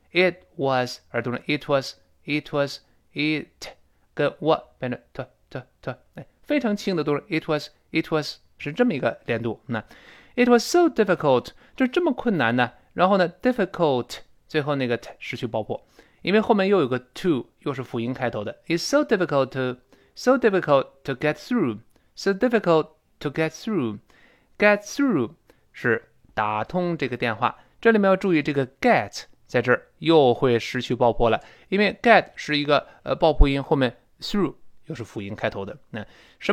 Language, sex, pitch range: Chinese, male, 125-190 Hz